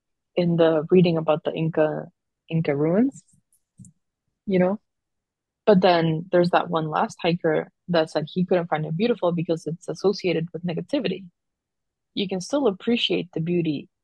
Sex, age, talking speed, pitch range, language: female, 20-39, 150 wpm, 160-180 Hz, English